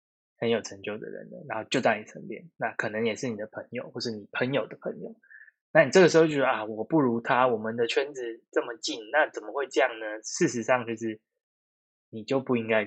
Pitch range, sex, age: 105-150 Hz, male, 20-39